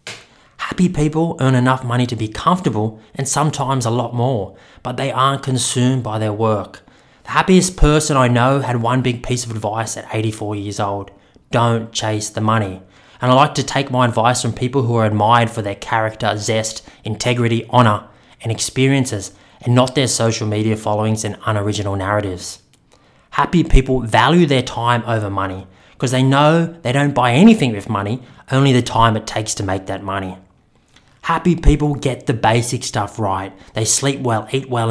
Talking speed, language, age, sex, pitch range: 180 wpm, English, 20-39, male, 110-135 Hz